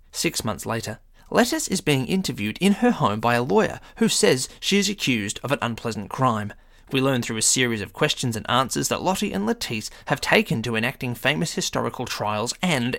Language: English